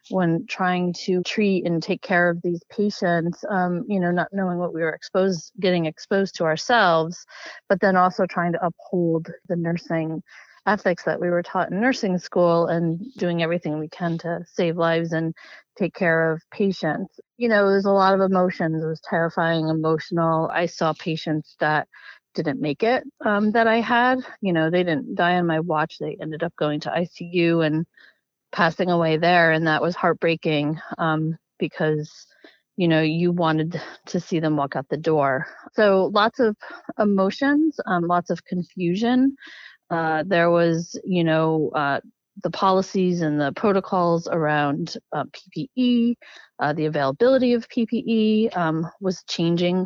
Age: 30-49